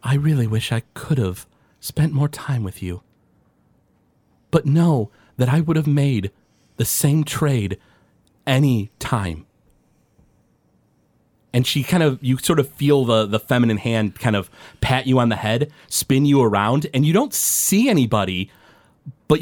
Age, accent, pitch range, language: 30-49, American, 110-145 Hz, English